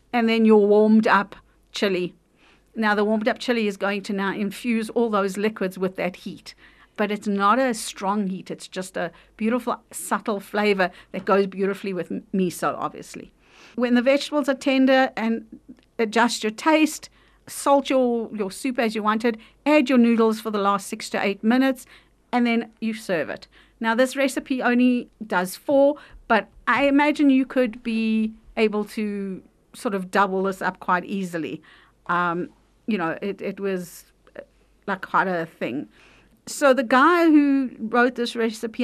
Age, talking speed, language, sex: 50-69, 165 wpm, English, female